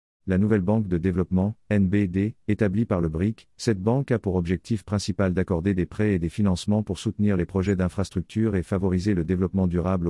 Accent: French